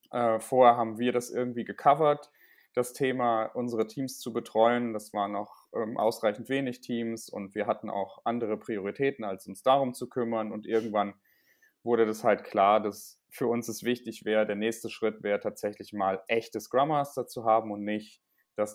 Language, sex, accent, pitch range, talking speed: German, male, German, 110-125 Hz, 180 wpm